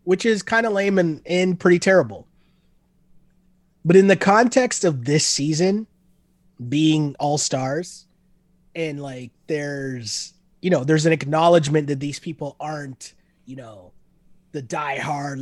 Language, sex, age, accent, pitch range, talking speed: English, male, 30-49, American, 150-185 Hz, 130 wpm